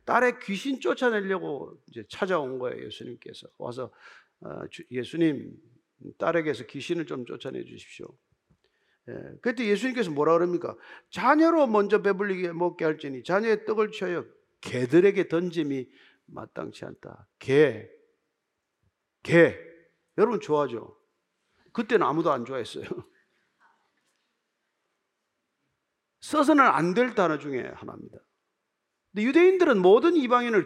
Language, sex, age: Korean, male, 50-69